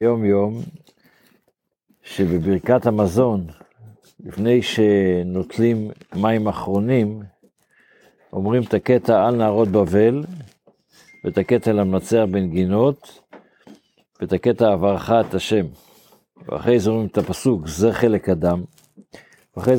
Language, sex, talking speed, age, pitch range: Hebrew, male, 95 wpm, 60-79, 95-115 Hz